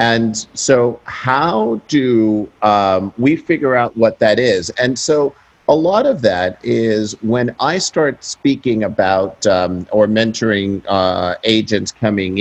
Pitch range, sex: 100-120 Hz, male